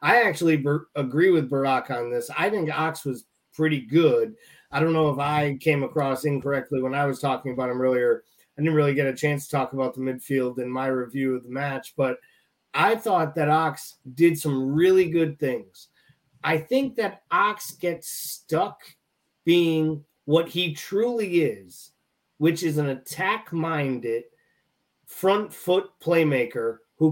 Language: English